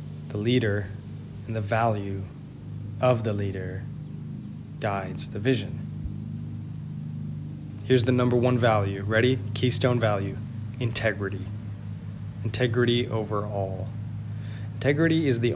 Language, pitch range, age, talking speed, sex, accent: English, 105-125 Hz, 20-39, 95 wpm, male, American